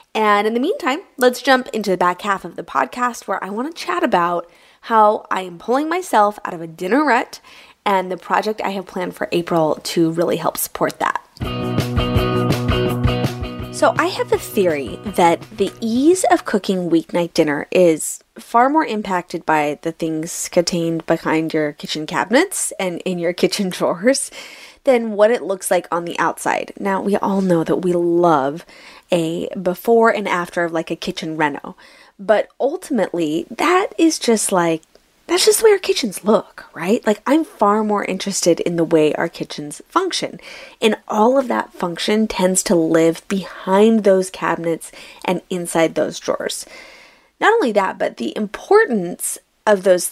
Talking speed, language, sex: 170 wpm, English, female